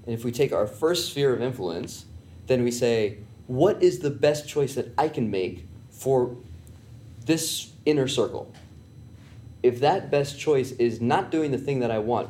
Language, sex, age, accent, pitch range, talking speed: English, male, 30-49, American, 110-140 Hz, 180 wpm